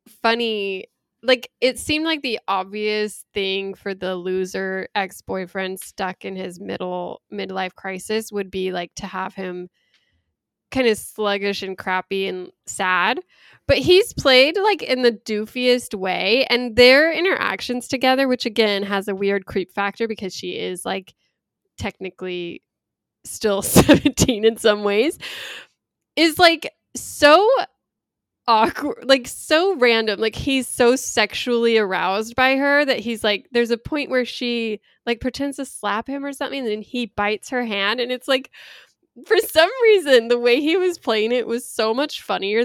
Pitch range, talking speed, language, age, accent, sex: 200-280 Hz, 155 wpm, English, 10-29, American, female